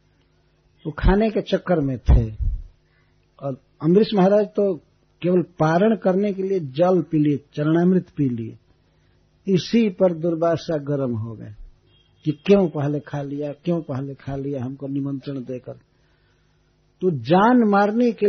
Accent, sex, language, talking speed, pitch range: native, male, Hindi, 145 wpm, 140-190 Hz